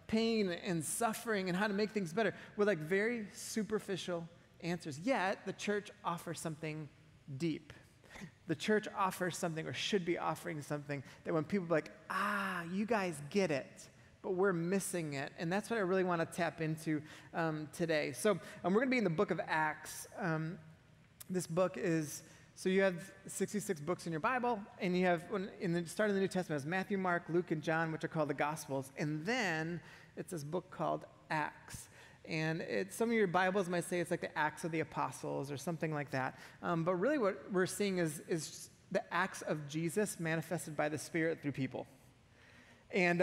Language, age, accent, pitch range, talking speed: English, 30-49, American, 155-195 Hz, 195 wpm